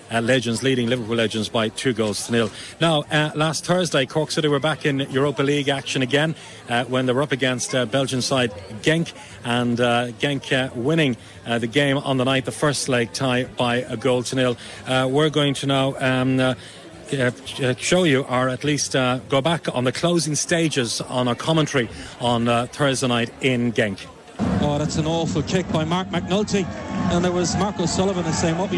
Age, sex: 40-59, male